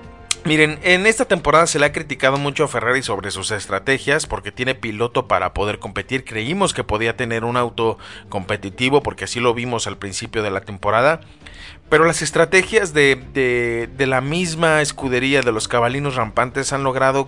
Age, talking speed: 40-59, 175 wpm